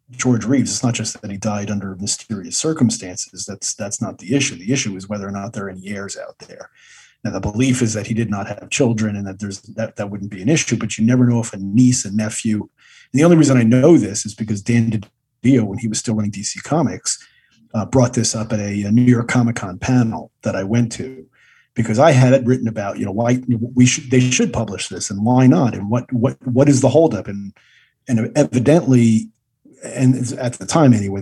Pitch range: 110-130 Hz